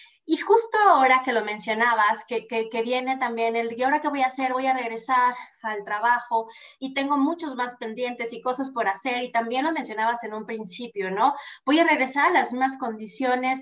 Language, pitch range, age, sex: Spanish, 230-300 Hz, 20-39, female